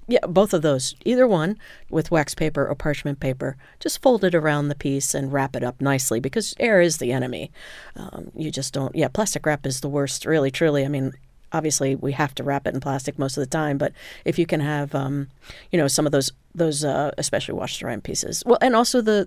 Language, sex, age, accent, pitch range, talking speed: English, female, 40-59, American, 140-175 Hz, 235 wpm